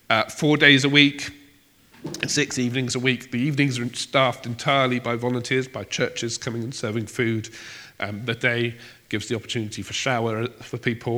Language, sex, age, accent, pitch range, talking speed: English, male, 40-59, British, 110-135 Hz, 170 wpm